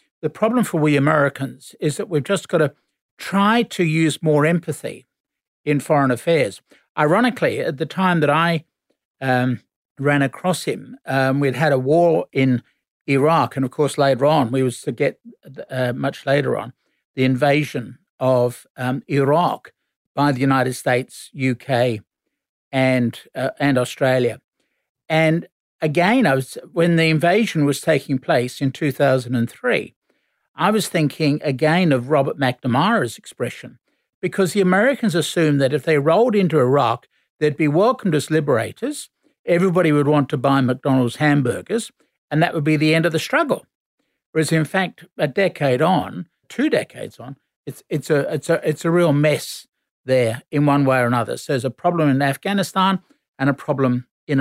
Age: 50-69